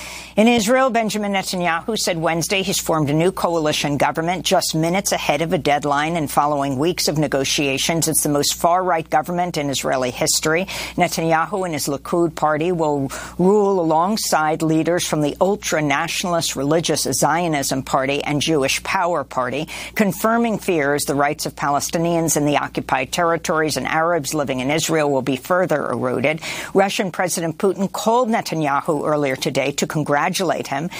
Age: 50-69